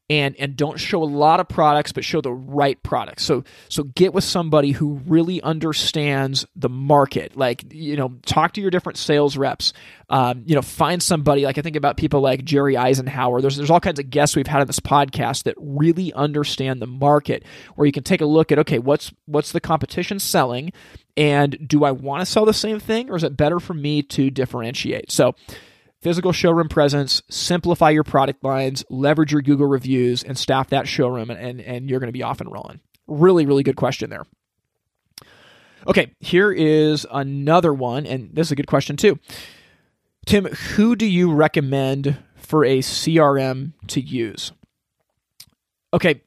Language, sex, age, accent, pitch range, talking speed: English, male, 20-39, American, 135-165 Hz, 190 wpm